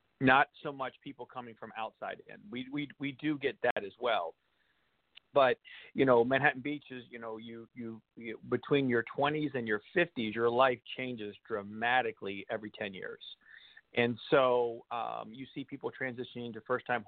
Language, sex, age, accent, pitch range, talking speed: English, male, 40-59, American, 120-145 Hz, 175 wpm